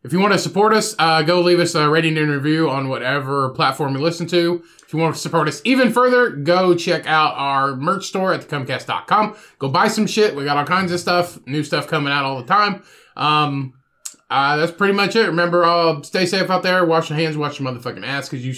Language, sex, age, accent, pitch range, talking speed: English, male, 20-39, American, 150-190 Hz, 240 wpm